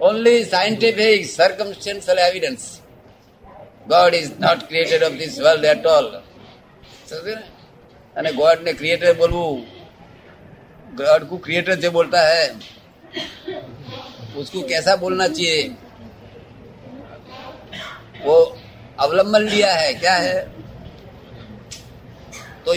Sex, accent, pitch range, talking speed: male, native, 150-235 Hz, 95 wpm